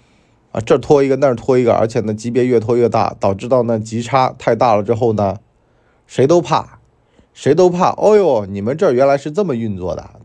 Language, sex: Chinese, male